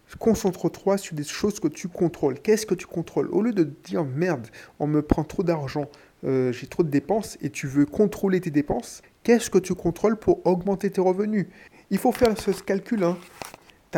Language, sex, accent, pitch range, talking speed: French, male, French, 140-185 Hz, 200 wpm